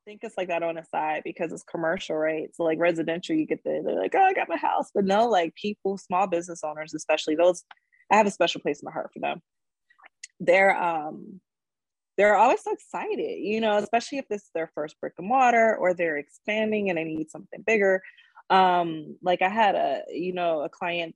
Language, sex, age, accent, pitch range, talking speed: English, female, 20-39, American, 160-215 Hz, 220 wpm